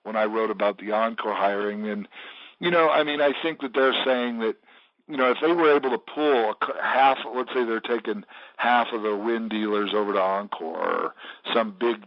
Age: 50-69